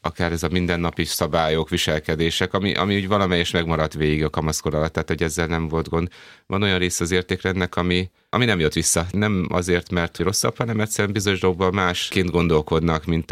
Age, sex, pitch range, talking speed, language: 30-49, male, 80-95 Hz, 185 wpm, Hungarian